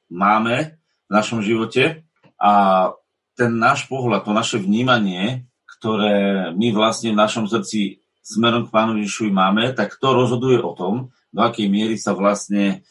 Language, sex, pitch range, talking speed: Slovak, male, 100-120 Hz, 150 wpm